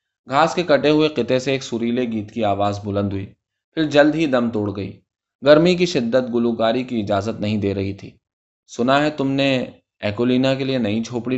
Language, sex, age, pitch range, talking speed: Urdu, male, 20-39, 105-140 Hz, 200 wpm